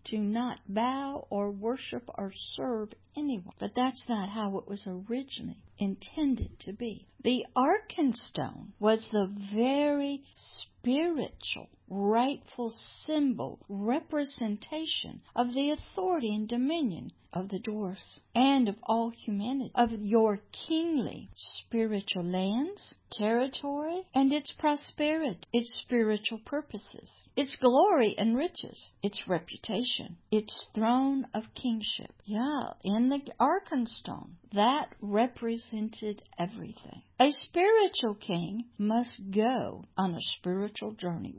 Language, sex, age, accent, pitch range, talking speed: English, female, 60-79, American, 210-275 Hz, 110 wpm